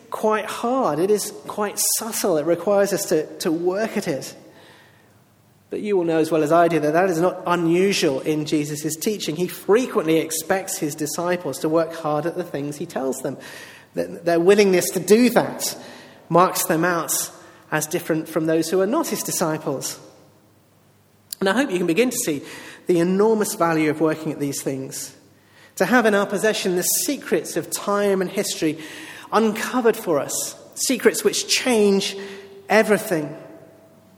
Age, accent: 40-59, British